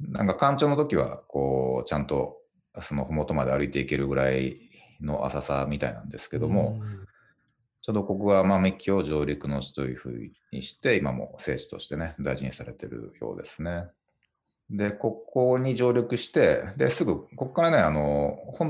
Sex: male